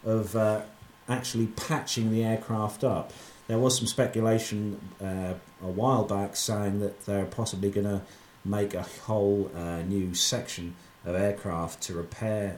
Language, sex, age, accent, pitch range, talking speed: English, male, 40-59, British, 100-120 Hz, 150 wpm